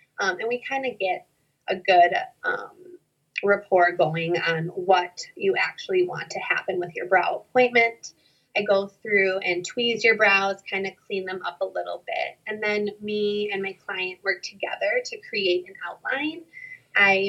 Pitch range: 180-235 Hz